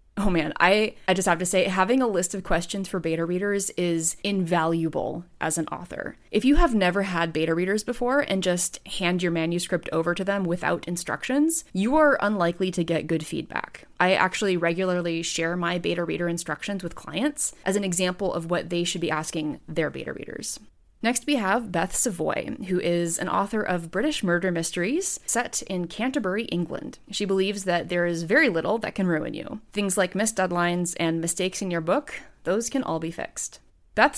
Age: 20-39